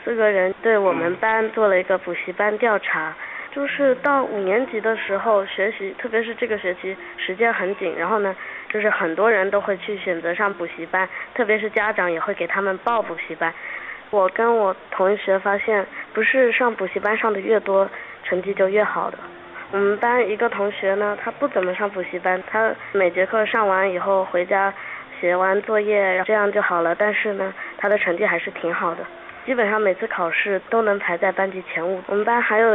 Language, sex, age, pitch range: Chinese, female, 20-39, 185-220 Hz